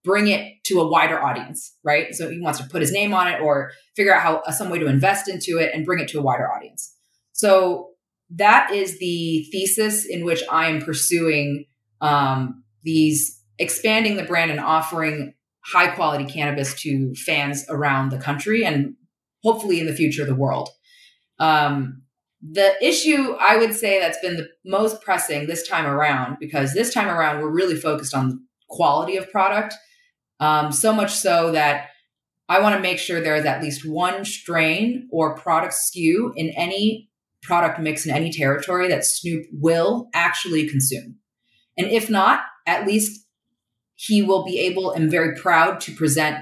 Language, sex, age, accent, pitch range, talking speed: English, female, 30-49, American, 150-190 Hz, 175 wpm